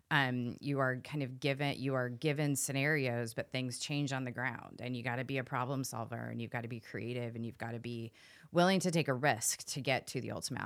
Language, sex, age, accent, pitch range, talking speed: English, female, 30-49, American, 120-150 Hz, 255 wpm